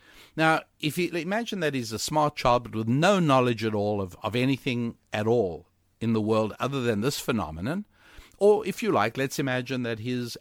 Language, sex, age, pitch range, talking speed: English, male, 60-79, 110-150 Hz, 200 wpm